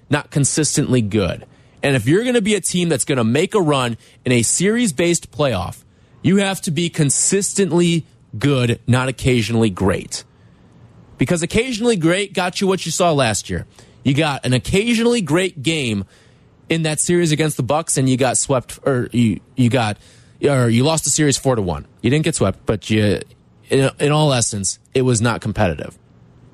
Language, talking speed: English, 185 wpm